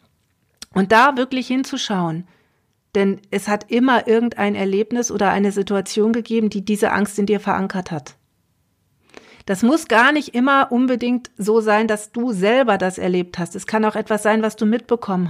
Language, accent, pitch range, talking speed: German, German, 200-250 Hz, 170 wpm